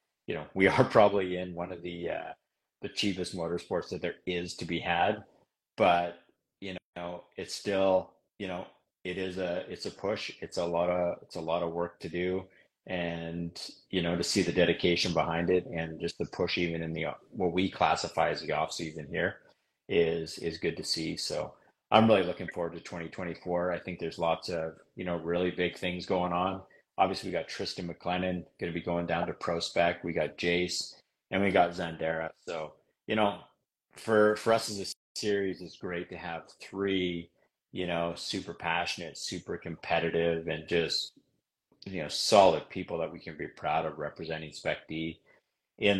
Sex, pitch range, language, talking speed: male, 85-90 Hz, English, 190 wpm